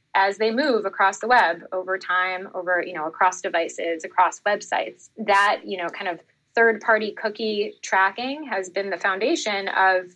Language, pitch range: English, 180-220 Hz